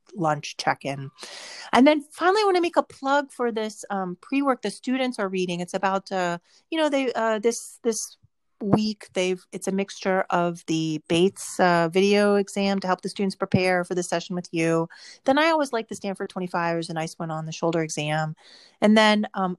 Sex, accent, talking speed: female, American, 205 wpm